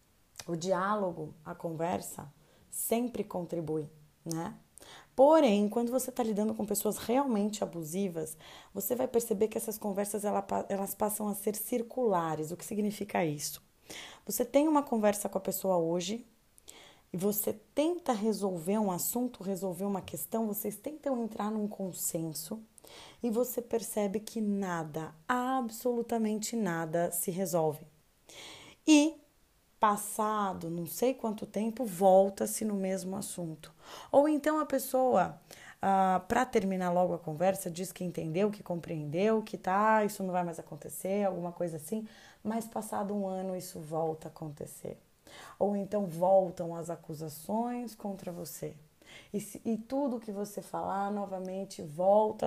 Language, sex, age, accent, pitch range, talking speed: Portuguese, female, 20-39, Brazilian, 175-220 Hz, 135 wpm